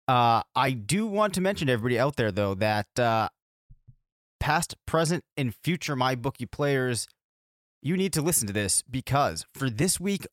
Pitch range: 115-145 Hz